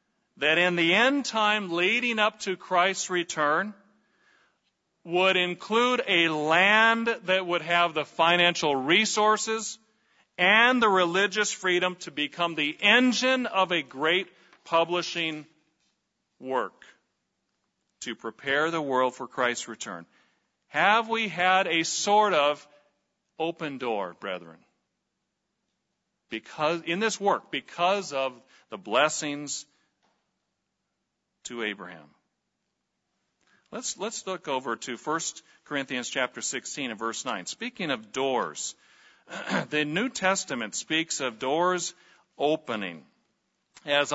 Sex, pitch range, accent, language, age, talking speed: male, 135-190 Hz, American, English, 40-59, 110 wpm